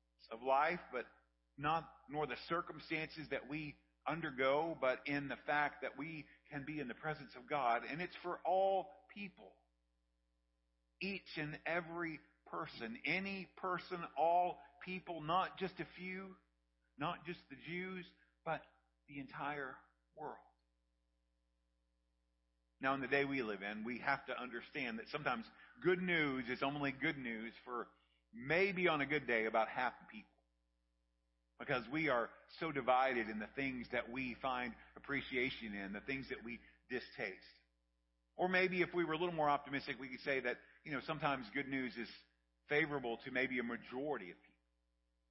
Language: English